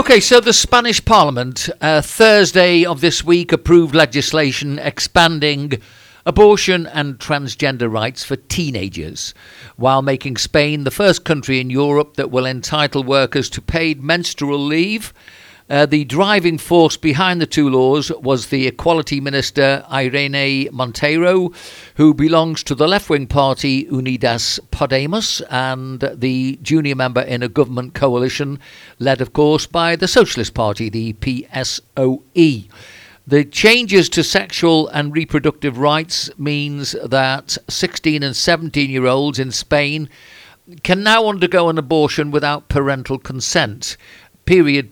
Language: English